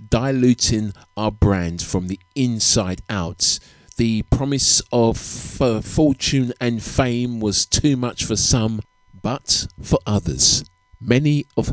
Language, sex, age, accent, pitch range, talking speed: English, male, 50-69, British, 95-125 Hz, 125 wpm